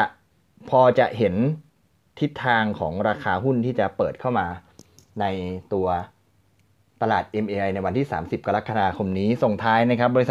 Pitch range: 95-120 Hz